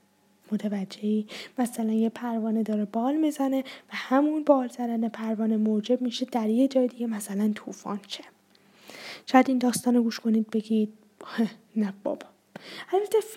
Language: Persian